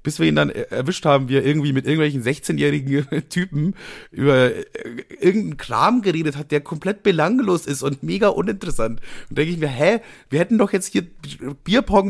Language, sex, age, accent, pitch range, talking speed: German, male, 30-49, German, 130-185 Hz, 180 wpm